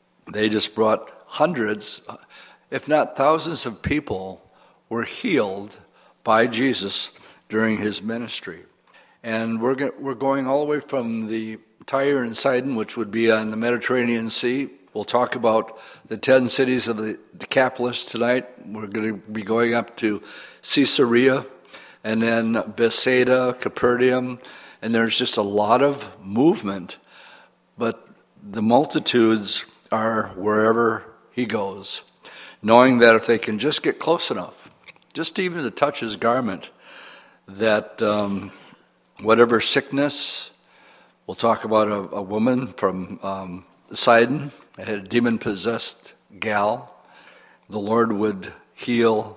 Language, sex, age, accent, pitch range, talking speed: English, male, 60-79, American, 105-125 Hz, 130 wpm